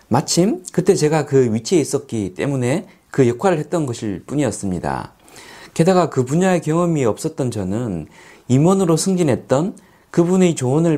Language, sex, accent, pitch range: Korean, male, native, 120-180 Hz